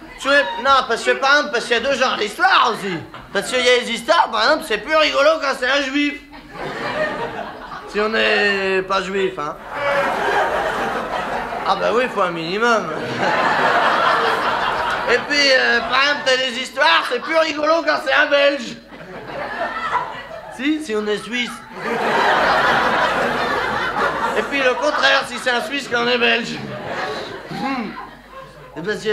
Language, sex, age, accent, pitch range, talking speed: French, male, 40-59, French, 185-275 Hz, 160 wpm